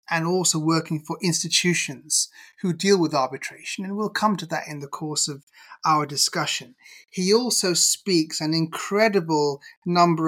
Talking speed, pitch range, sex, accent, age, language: 150 wpm, 165-200 Hz, male, British, 30-49, English